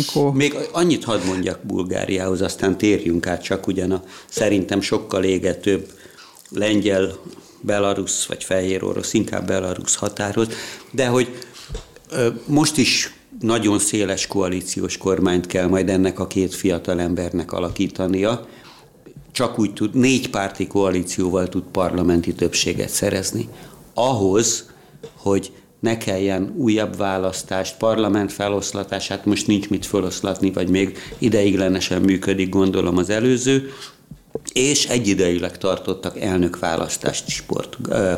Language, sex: Hungarian, male